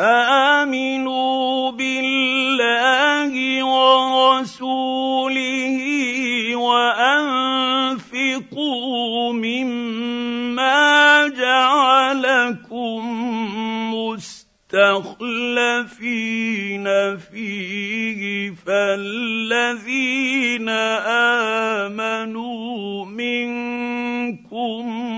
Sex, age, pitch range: male, 50-69, 220-255 Hz